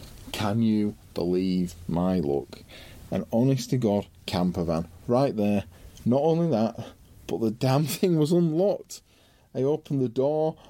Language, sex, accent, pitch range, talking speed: English, male, British, 90-115 Hz, 145 wpm